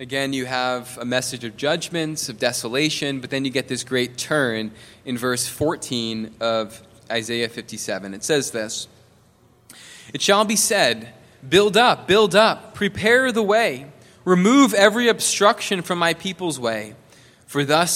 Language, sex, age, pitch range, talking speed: English, male, 20-39, 125-165 Hz, 150 wpm